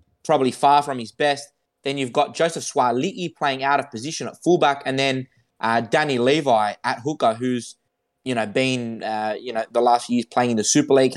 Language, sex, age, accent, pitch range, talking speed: English, male, 20-39, Australian, 130-160 Hz, 210 wpm